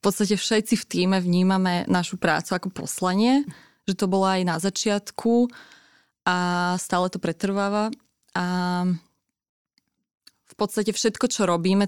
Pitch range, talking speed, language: 180-200 Hz, 130 wpm, Slovak